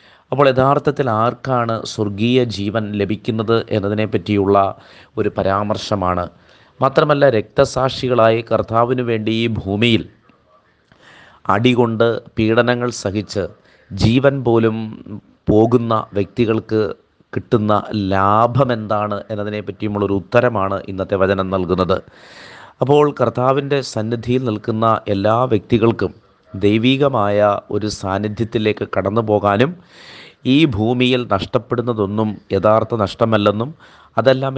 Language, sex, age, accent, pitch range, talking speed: Malayalam, male, 30-49, native, 100-120 Hz, 90 wpm